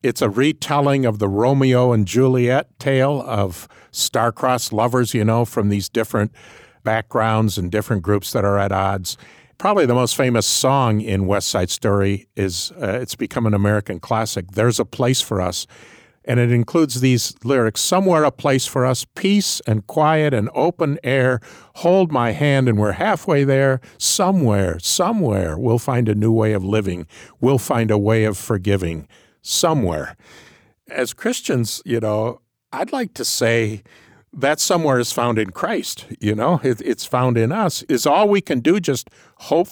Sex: male